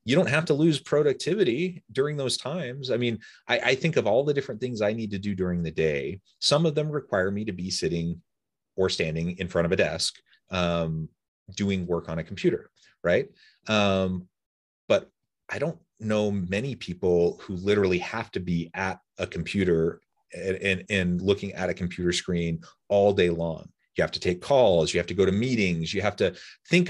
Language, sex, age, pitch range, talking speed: English, male, 30-49, 90-115 Hz, 200 wpm